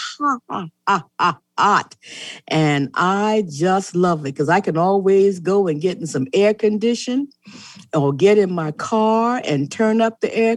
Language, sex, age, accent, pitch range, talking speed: English, female, 50-69, American, 175-235 Hz, 155 wpm